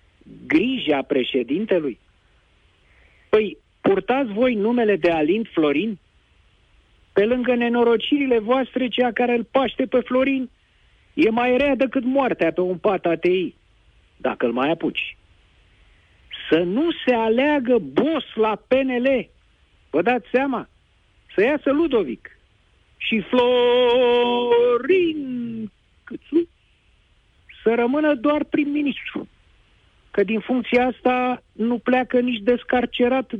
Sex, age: male, 50-69